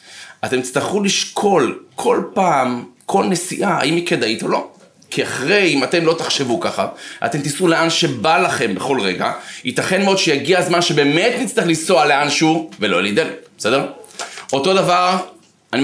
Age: 30-49